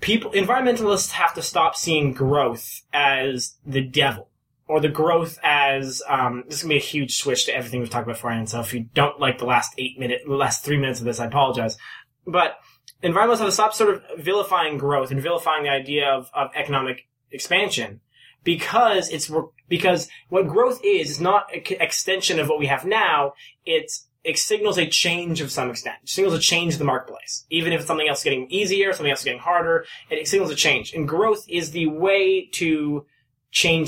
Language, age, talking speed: English, 20-39, 205 wpm